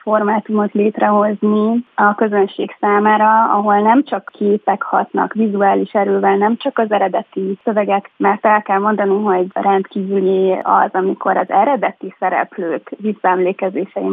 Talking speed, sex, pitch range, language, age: 125 wpm, female, 190-215 Hz, Hungarian, 20-39